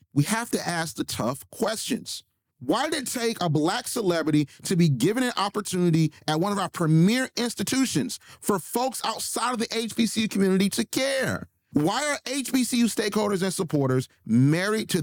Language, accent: English, American